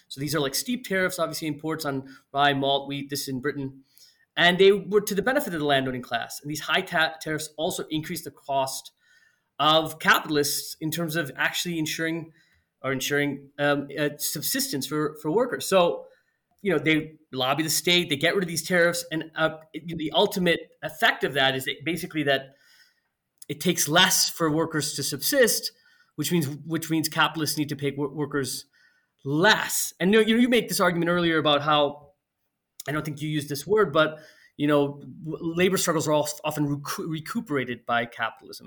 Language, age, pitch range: English, 30-49, 140-175 Hz